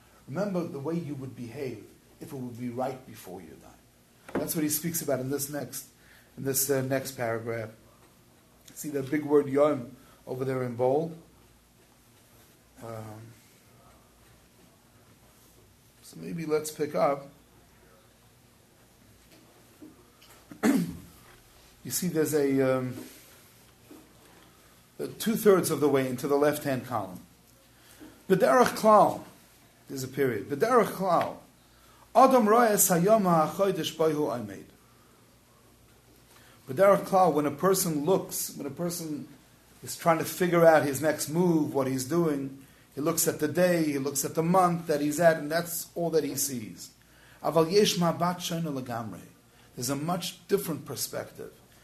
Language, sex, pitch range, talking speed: English, male, 130-170 Hz, 135 wpm